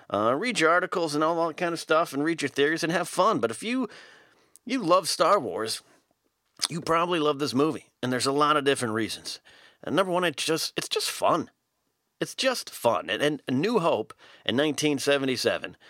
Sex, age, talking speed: male, 40-59, 200 wpm